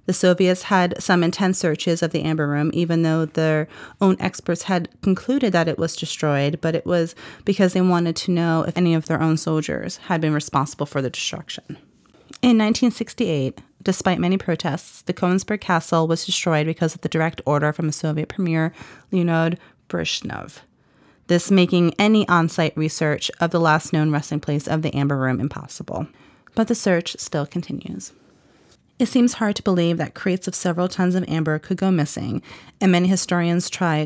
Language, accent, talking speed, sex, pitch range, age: English, American, 180 wpm, female, 160-190 Hz, 30-49